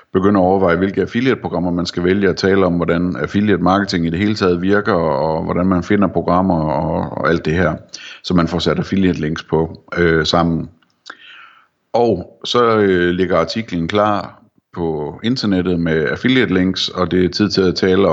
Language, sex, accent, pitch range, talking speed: Danish, male, native, 85-95 Hz, 175 wpm